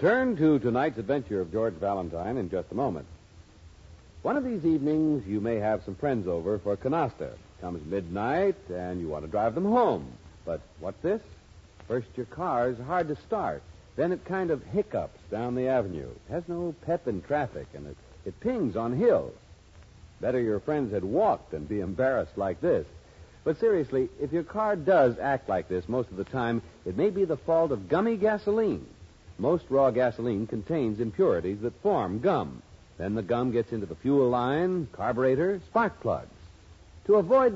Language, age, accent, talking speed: English, 60-79, American, 180 wpm